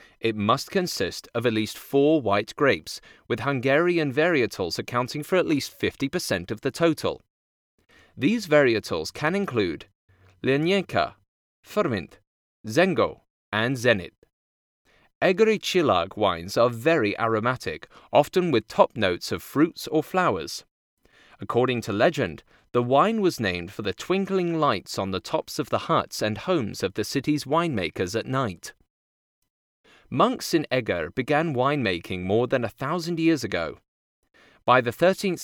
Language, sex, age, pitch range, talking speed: English, male, 30-49, 105-160 Hz, 140 wpm